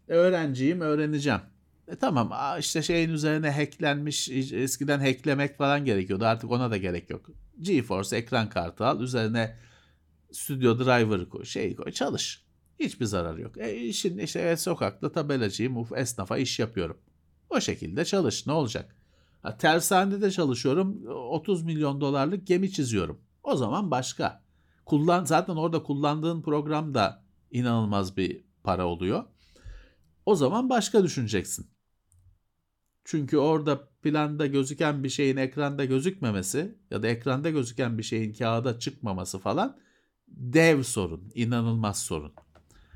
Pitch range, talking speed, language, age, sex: 95-145 Hz, 125 wpm, Turkish, 50-69, male